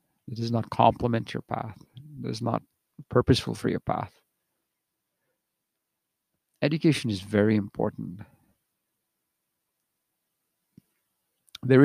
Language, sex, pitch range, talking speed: English, male, 110-140 Hz, 90 wpm